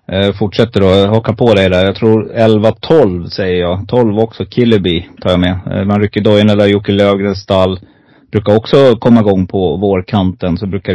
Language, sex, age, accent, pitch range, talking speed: Swedish, male, 30-49, native, 95-110 Hz, 195 wpm